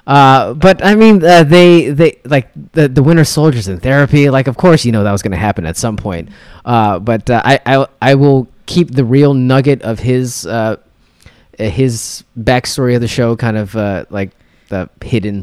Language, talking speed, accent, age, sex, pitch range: English, 200 wpm, American, 20-39, male, 90-125 Hz